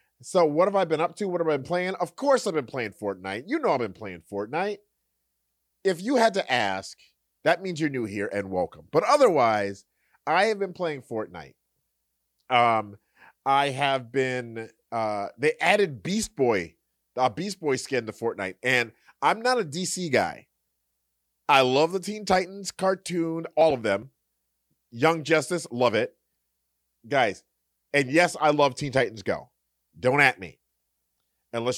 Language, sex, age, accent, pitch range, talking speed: English, male, 30-49, American, 100-165 Hz, 170 wpm